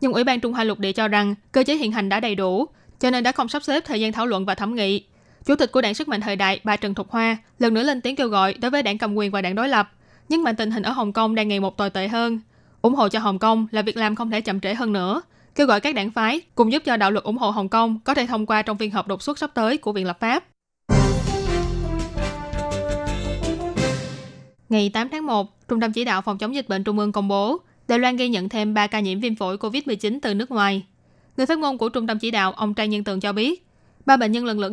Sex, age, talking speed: female, 20-39, 280 wpm